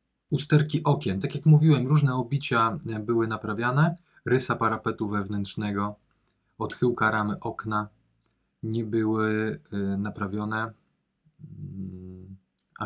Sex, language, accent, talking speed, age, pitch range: male, Polish, native, 90 wpm, 20-39, 95-115 Hz